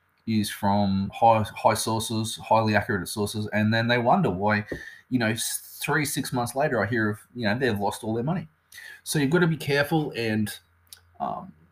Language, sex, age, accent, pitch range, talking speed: English, male, 20-39, Australian, 110-140 Hz, 190 wpm